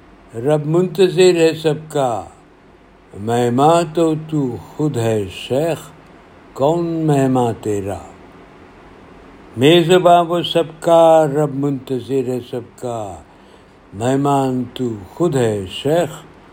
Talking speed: 100 wpm